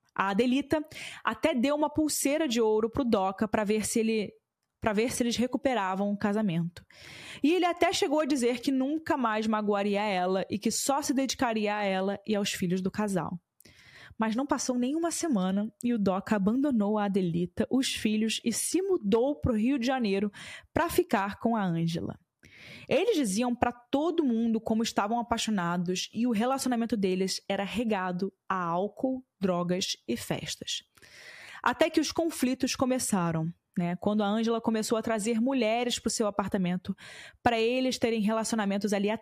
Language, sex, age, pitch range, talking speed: Portuguese, female, 20-39, 200-255 Hz, 170 wpm